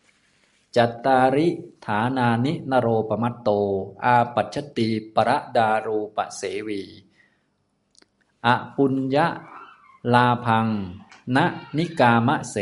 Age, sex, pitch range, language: 20-39, male, 105-125 Hz, Thai